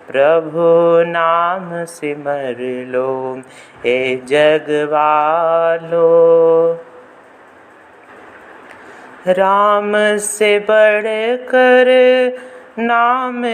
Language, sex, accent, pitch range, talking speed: Hindi, male, native, 165-210 Hz, 50 wpm